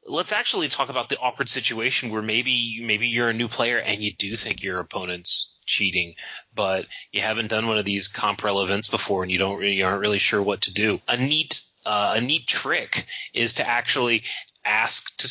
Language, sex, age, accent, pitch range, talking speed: English, male, 30-49, American, 105-120 Hz, 210 wpm